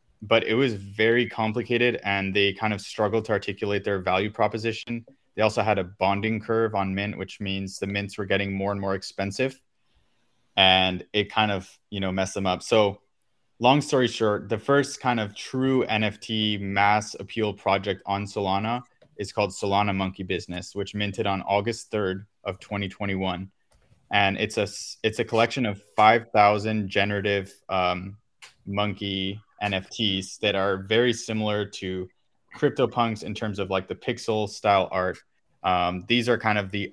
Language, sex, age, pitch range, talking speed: English, male, 20-39, 95-110 Hz, 165 wpm